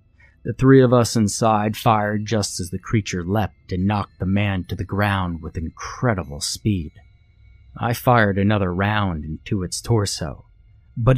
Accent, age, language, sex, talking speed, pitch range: American, 30-49, English, male, 155 wpm, 90-115 Hz